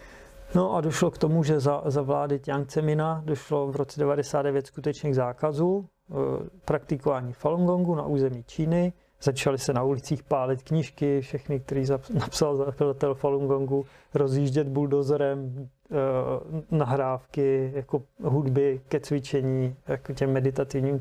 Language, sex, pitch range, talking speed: Czech, male, 135-155 Hz, 135 wpm